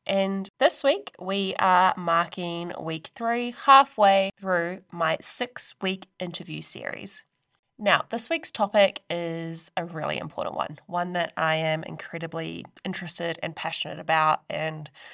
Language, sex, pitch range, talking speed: English, female, 160-190 Hz, 130 wpm